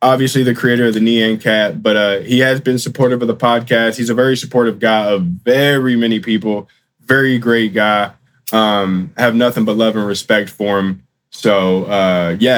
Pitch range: 115-145 Hz